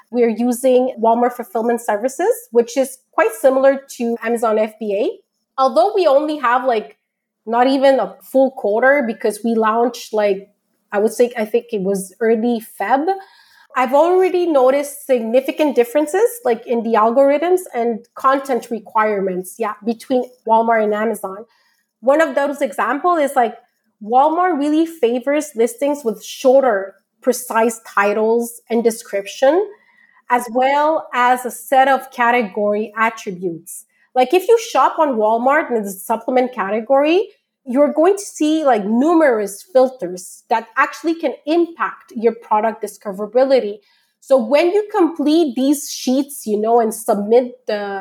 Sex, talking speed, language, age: female, 140 wpm, English, 30-49